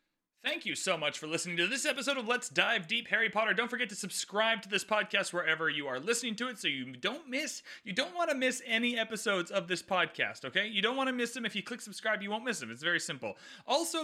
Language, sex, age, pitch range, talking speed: English, male, 30-49, 180-245 Hz, 260 wpm